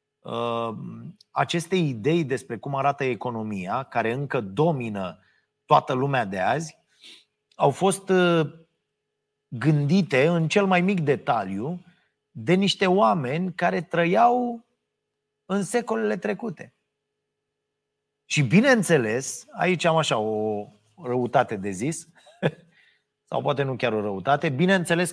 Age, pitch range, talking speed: 30-49, 120-165 Hz, 105 wpm